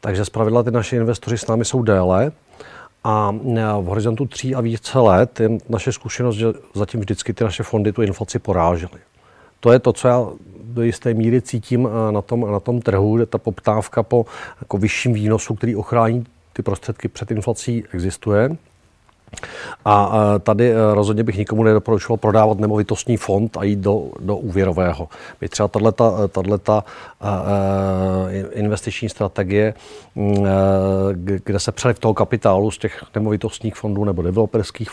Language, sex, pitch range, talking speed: Czech, male, 100-115 Hz, 150 wpm